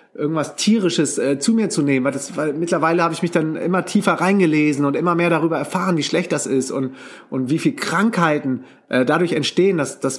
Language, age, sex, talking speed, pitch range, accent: German, 30-49, male, 210 wpm, 145-175 Hz, German